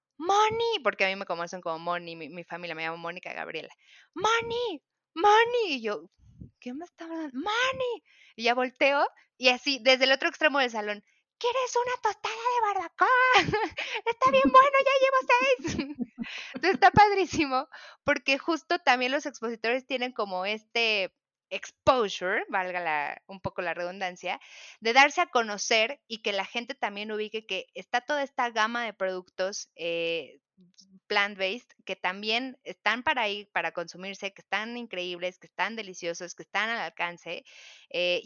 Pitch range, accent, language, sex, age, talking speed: 175-270 Hz, Mexican, Spanish, female, 20-39, 160 wpm